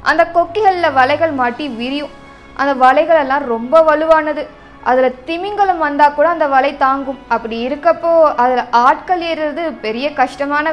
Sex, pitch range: female, 255-320 Hz